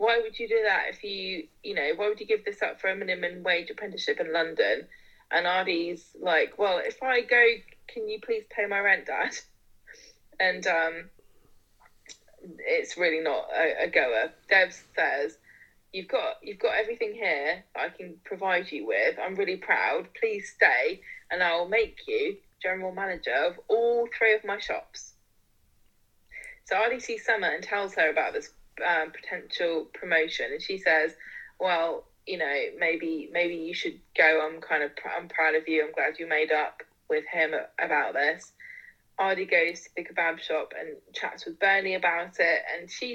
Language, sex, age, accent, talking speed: English, female, 20-39, British, 180 wpm